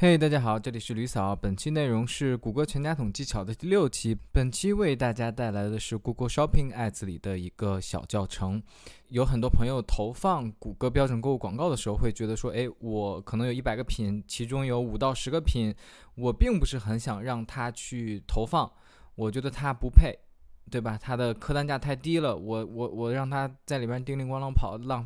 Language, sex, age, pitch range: Chinese, male, 20-39, 110-140 Hz